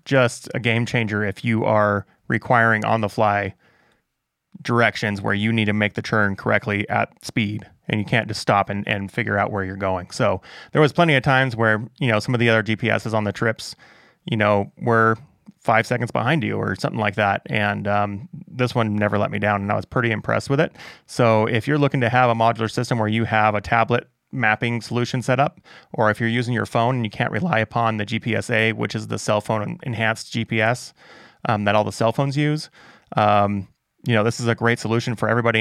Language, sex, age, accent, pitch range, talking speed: English, male, 20-39, American, 105-125 Hz, 220 wpm